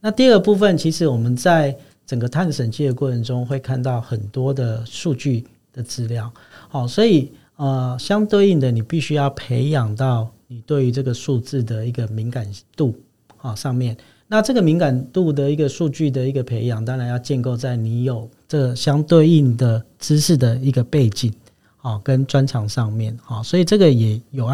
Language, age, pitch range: Chinese, 40-59, 120-150 Hz